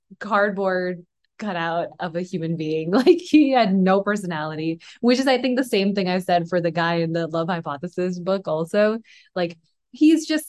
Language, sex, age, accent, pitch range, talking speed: English, female, 20-39, American, 175-230 Hz, 185 wpm